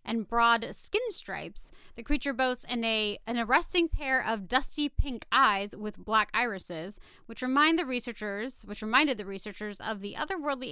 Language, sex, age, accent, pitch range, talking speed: English, female, 20-39, American, 200-275 Hz, 170 wpm